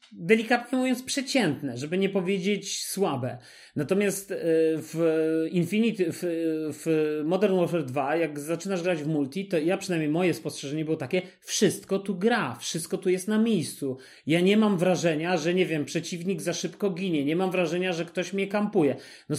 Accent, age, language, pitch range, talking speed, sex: native, 30-49, Polish, 150-185 Hz, 165 wpm, male